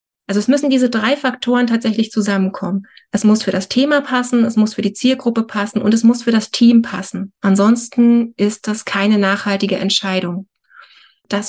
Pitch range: 205-245 Hz